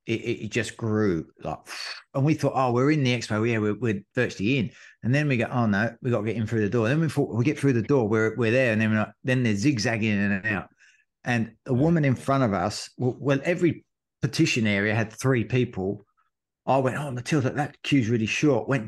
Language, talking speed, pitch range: English, 255 wpm, 110-135 Hz